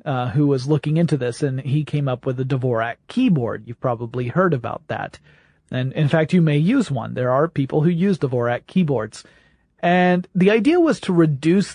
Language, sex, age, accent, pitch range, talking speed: English, male, 40-59, American, 135-170 Hz, 200 wpm